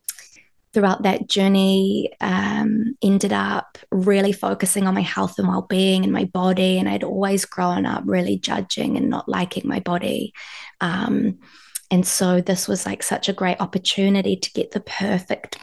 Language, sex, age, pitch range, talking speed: English, female, 20-39, 185-200 Hz, 160 wpm